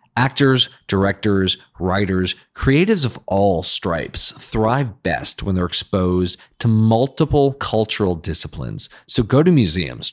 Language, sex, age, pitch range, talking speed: English, male, 40-59, 90-125 Hz, 120 wpm